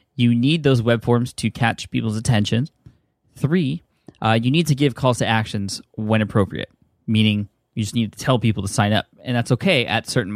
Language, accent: English, American